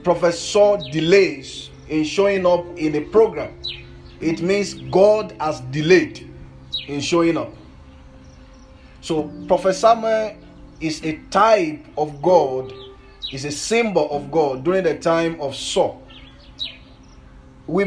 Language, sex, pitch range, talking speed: English, male, 150-200 Hz, 120 wpm